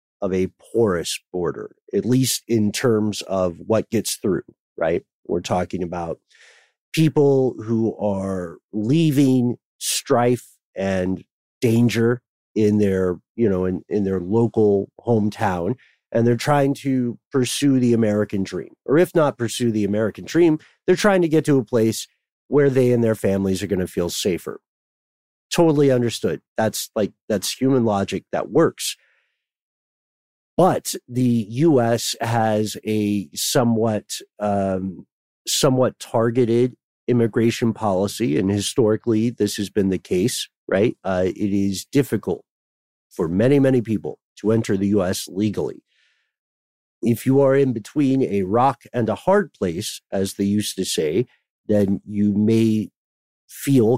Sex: male